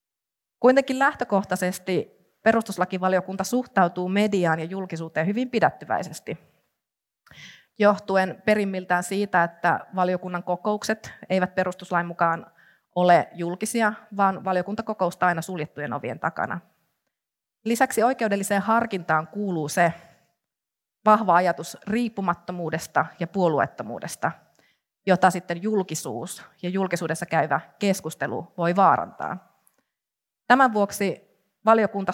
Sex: female